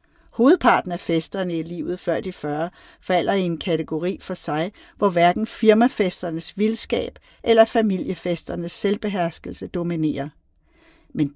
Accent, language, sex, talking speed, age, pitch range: native, Danish, female, 120 wpm, 50-69, 160-220 Hz